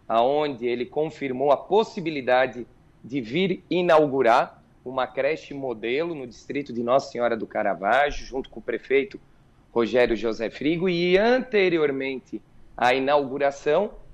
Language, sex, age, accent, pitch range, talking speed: Portuguese, male, 40-59, Brazilian, 130-165 Hz, 125 wpm